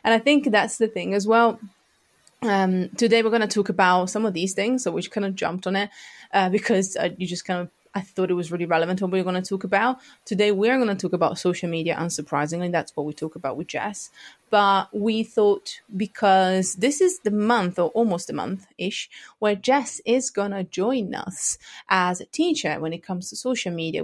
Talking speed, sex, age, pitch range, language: 225 wpm, female, 20-39, 175-225 Hz, English